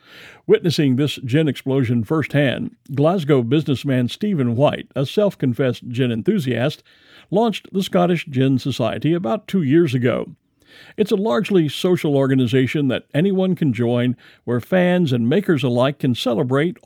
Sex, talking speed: male, 135 wpm